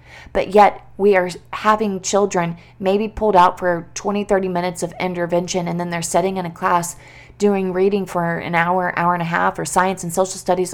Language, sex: English, female